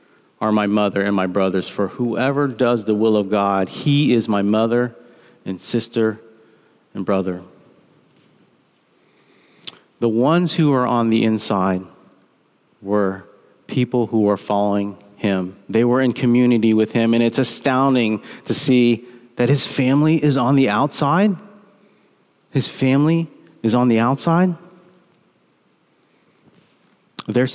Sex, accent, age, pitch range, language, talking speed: male, American, 40-59, 105-125 Hz, English, 130 wpm